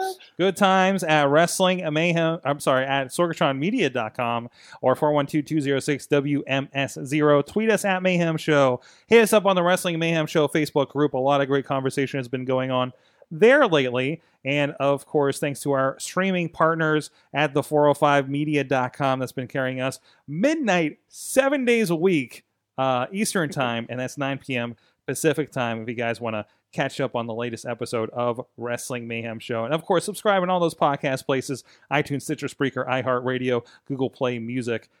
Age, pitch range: 30-49, 125-165 Hz